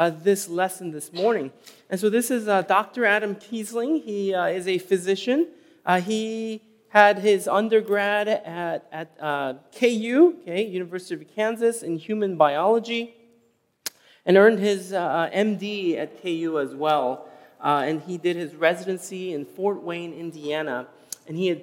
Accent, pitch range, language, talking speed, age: American, 155-200 Hz, English, 155 wpm, 30-49